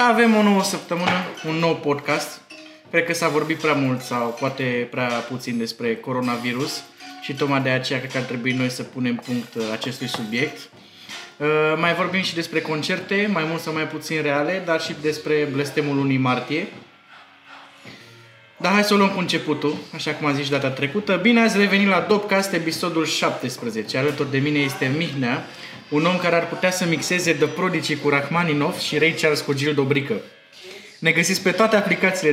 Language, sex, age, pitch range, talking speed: Romanian, male, 20-39, 140-180 Hz, 175 wpm